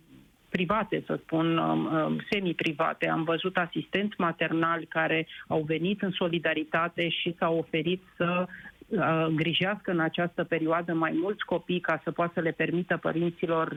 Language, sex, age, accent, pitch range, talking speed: Romanian, female, 30-49, native, 165-180 Hz, 135 wpm